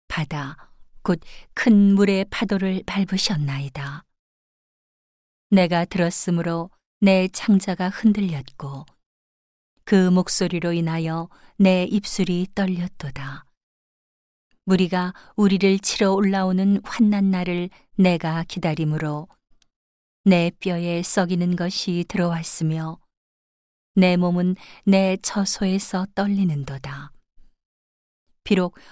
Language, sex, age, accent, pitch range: Korean, female, 40-59, native, 160-195 Hz